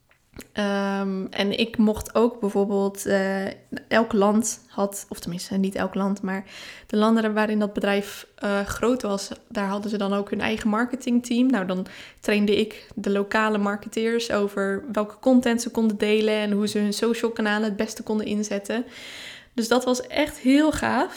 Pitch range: 200-235 Hz